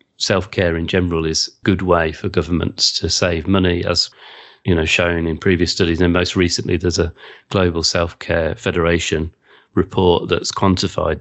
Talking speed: 170 wpm